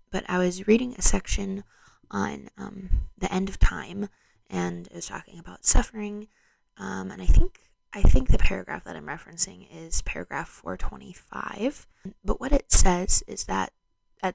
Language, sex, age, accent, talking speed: English, female, 20-39, American, 165 wpm